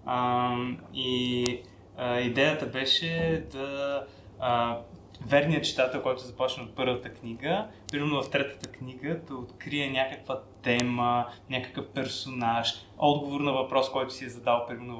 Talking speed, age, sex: 130 wpm, 20-39, male